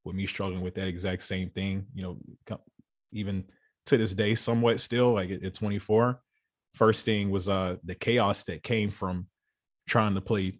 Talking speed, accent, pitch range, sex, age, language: 175 wpm, American, 95-105 Hz, male, 20-39, English